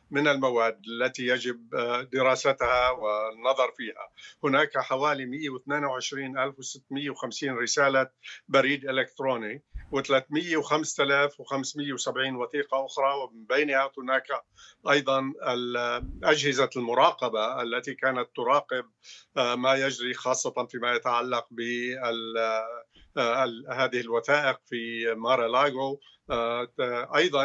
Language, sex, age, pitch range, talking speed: Arabic, male, 50-69, 125-140 Hz, 80 wpm